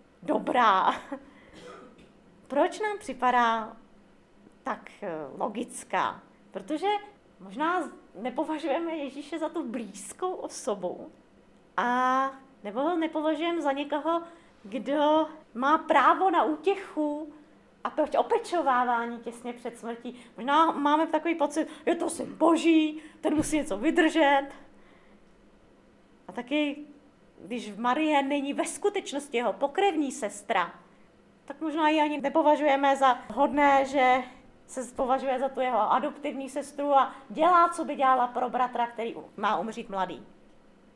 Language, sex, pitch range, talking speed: Czech, female, 245-310 Hz, 115 wpm